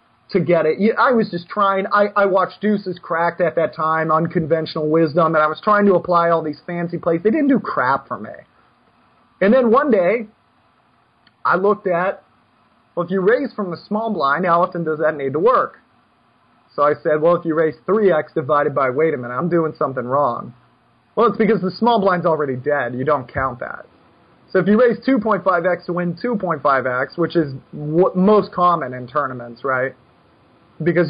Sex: male